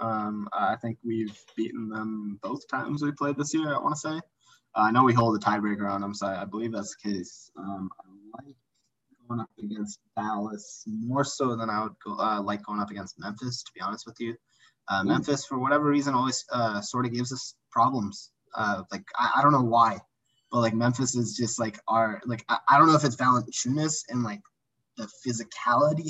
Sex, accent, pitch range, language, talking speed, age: male, American, 110-145 Hz, English, 215 wpm, 20-39